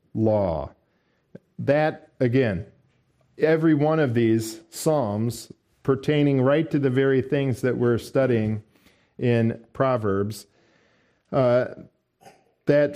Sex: male